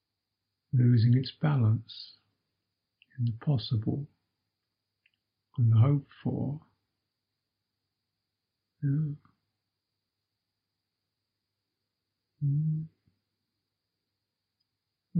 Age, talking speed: 50-69, 45 wpm